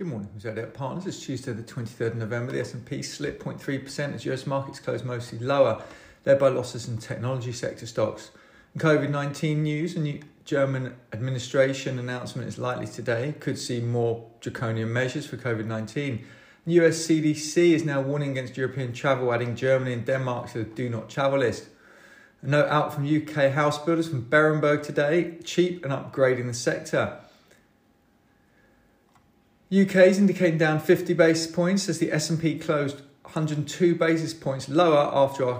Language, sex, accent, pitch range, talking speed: English, male, British, 130-160 Hz, 160 wpm